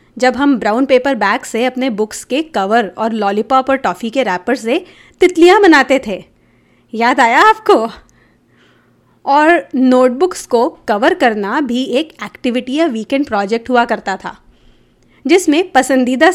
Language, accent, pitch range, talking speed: Hindi, native, 235-320 Hz, 145 wpm